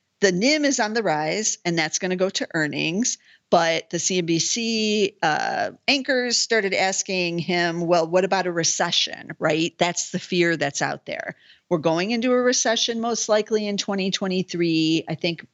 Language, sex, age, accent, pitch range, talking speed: English, female, 50-69, American, 155-200 Hz, 170 wpm